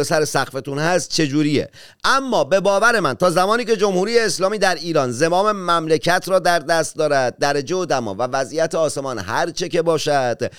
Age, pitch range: 40-59, 135-175 Hz